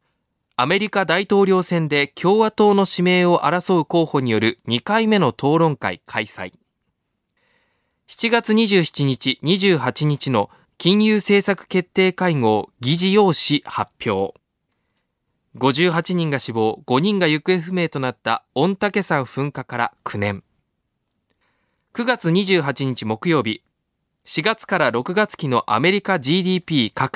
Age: 20-39